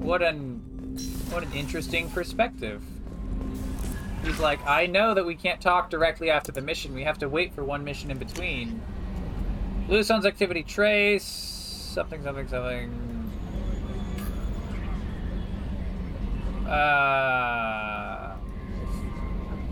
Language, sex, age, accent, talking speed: English, male, 20-39, American, 105 wpm